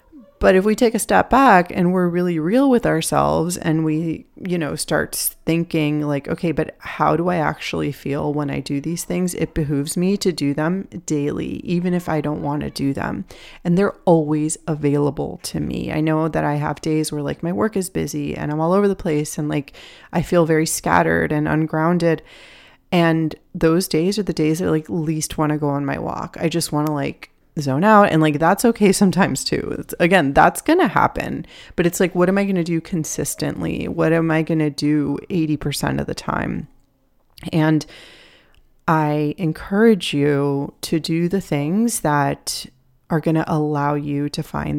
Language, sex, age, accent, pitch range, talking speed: English, female, 30-49, American, 150-180 Hz, 200 wpm